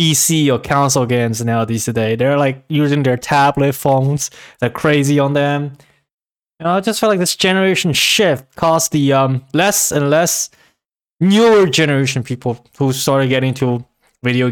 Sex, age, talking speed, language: male, 20-39, 160 wpm, English